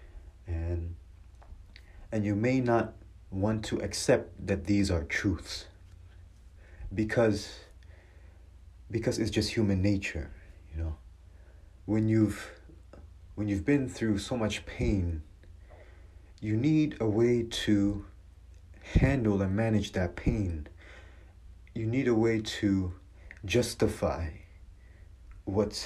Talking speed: 105 wpm